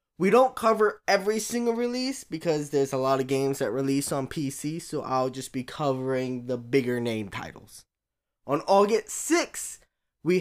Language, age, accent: English, 10-29, American